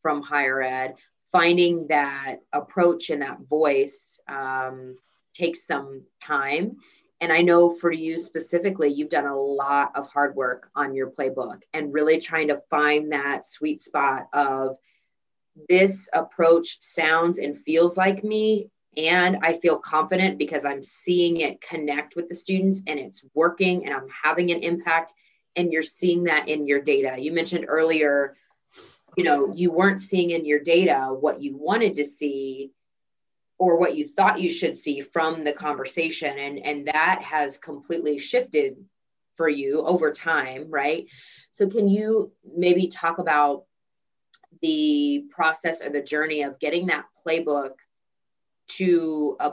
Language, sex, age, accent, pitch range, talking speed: English, female, 30-49, American, 145-175 Hz, 155 wpm